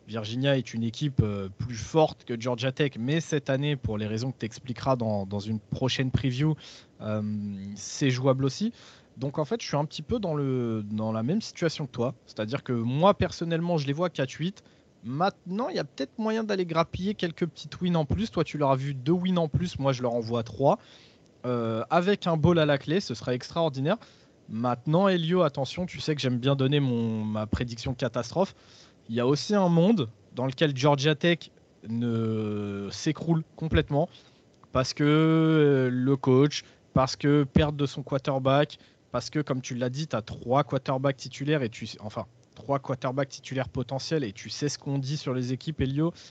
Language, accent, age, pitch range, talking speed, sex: French, French, 20-39, 120-155 Hz, 200 wpm, male